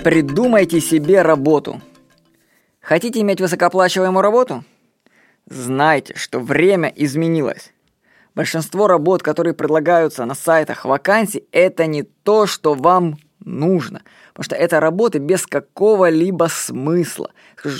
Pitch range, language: 150-195 Hz, Russian